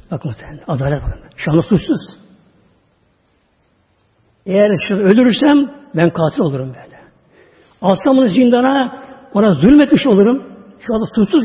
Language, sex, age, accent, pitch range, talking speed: Turkish, male, 60-79, native, 160-230 Hz, 115 wpm